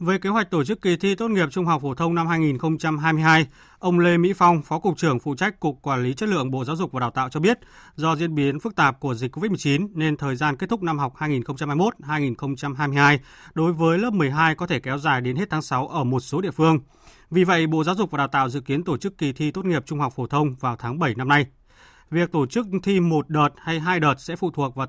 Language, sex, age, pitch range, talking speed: Vietnamese, male, 20-39, 140-175 Hz, 260 wpm